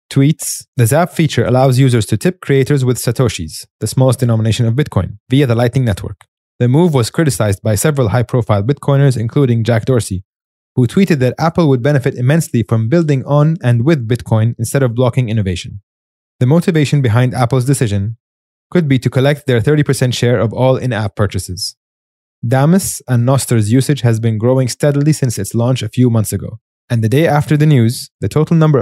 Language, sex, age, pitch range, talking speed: English, male, 20-39, 115-145 Hz, 185 wpm